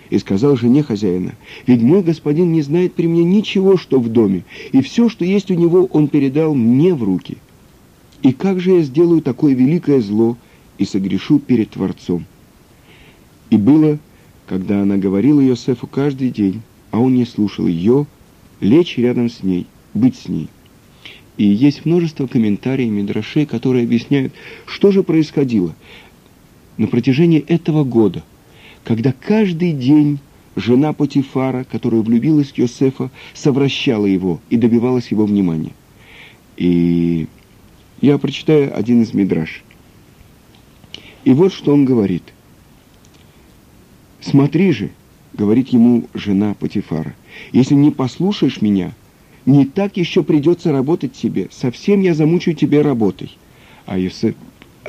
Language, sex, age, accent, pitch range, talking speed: Russian, male, 50-69, native, 110-155 Hz, 130 wpm